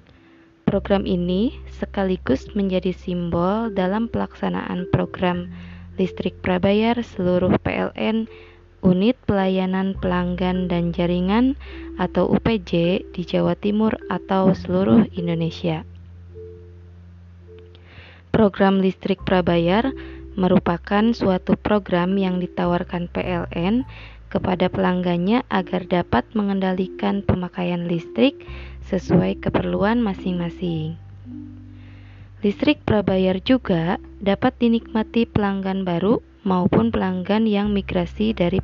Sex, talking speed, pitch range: female, 85 wpm, 165-195 Hz